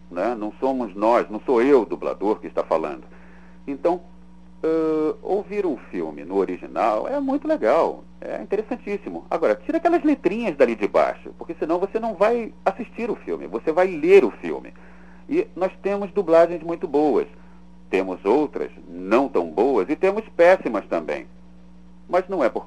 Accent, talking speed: Brazilian, 165 wpm